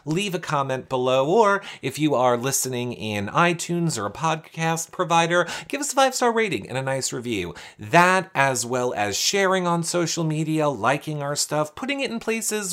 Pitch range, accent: 125-180 Hz, American